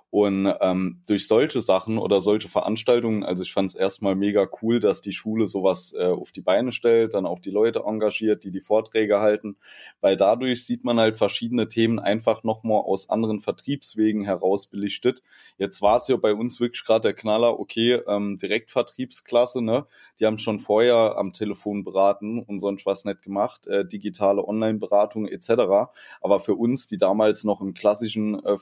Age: 20-39